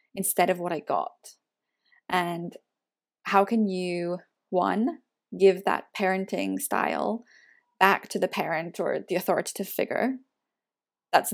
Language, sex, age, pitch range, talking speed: English, female, 10-29, 185-210 Hz, 120 wpm